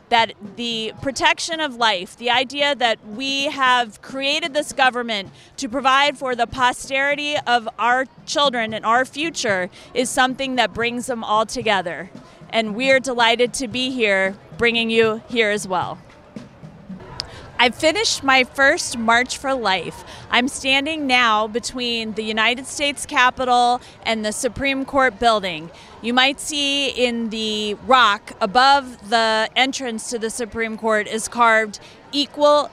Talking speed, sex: 145 wpm, female